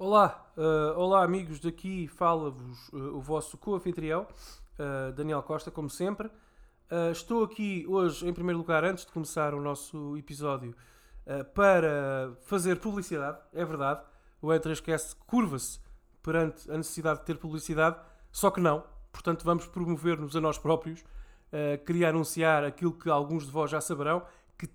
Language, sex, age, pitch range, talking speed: Portuguese, male, 20-39, 145-180 Hz, 155 wpm